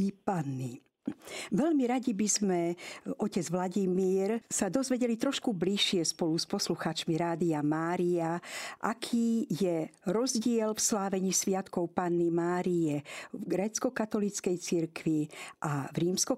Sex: female